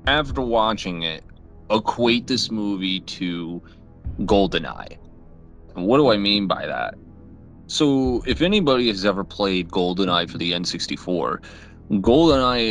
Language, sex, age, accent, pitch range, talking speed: English, male, 30-49, American, 90-115 Hz, 120 wpm